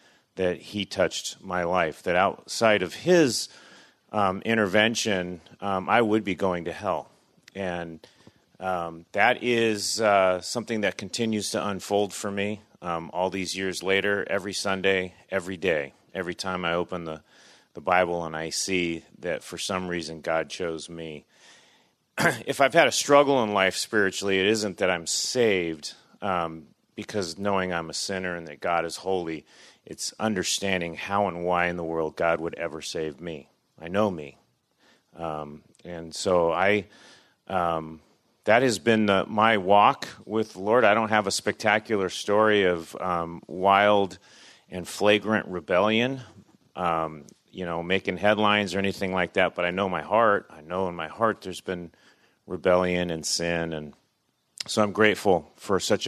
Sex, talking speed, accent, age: male, 165 wpm, American, 40-59